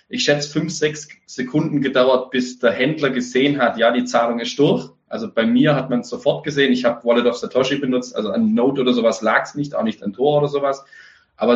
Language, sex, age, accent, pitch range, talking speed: German, male, 20-39, German, 125-155 Hz, 230 wpm